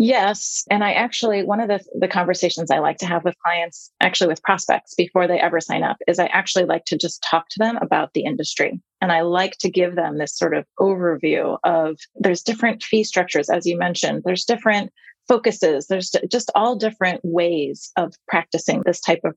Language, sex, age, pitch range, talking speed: English, female, 30-49, 170-220 Hz, 205 wpm